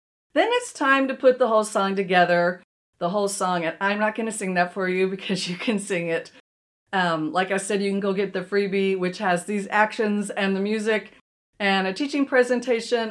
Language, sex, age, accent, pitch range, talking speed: English, female, 40-59, American, 190-250 Hz, 210 wpm